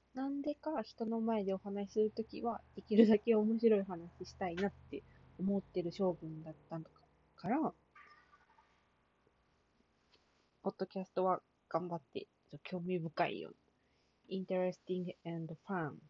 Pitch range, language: 165-215 Hz, Japanese